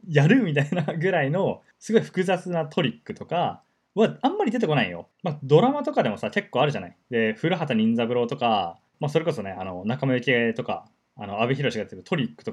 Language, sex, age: Japanese, male, 20-39